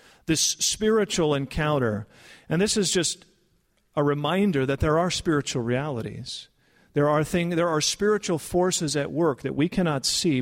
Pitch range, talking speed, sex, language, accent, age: 135-185 Hz, 155 wpm, male, English, American, 50-69